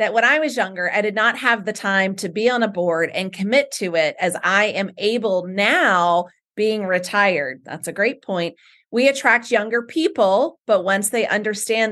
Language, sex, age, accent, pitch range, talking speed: English, female, 30-49, American, 180-230 Hz, 195 wpm